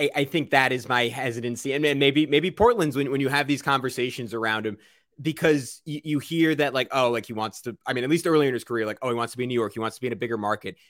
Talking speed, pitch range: 295 wpm, 125-155 Hz